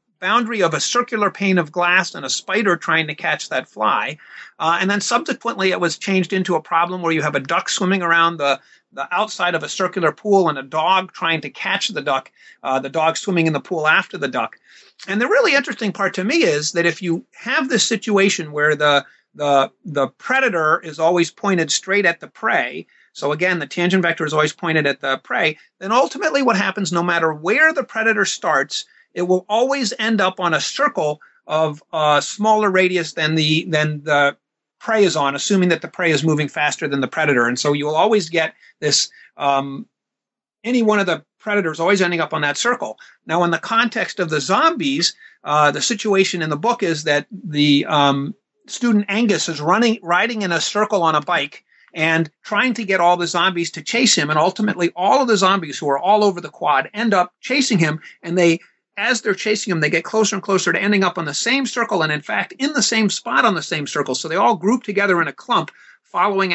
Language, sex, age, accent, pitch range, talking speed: English, male, 30-49, American, 155-210 Hz, 220 wpm